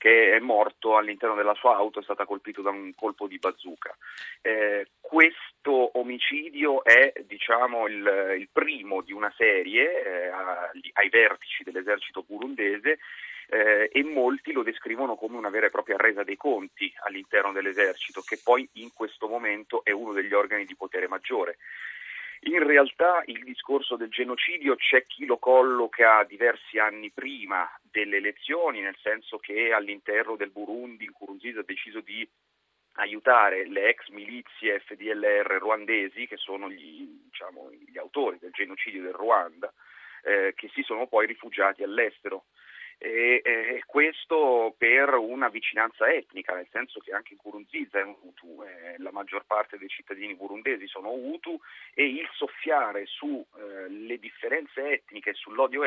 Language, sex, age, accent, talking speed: Italian, male, 30-49, native, 145 wpm